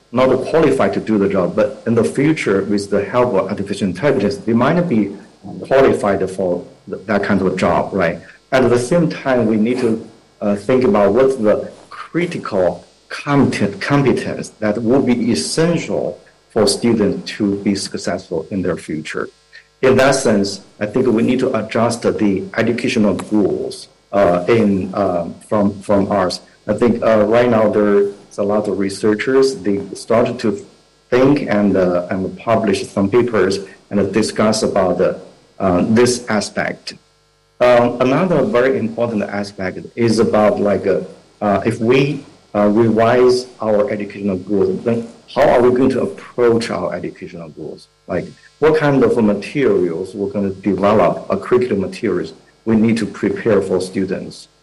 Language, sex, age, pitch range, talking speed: English, male, 50-69, 100-125 Hz, 155 wpm